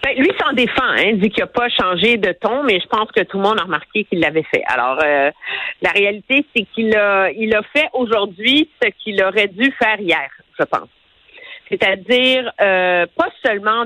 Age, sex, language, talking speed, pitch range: 50-69, female, French, 210 wpm, 190-275 Hz